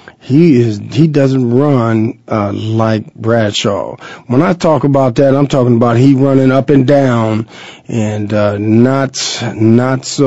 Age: 40-59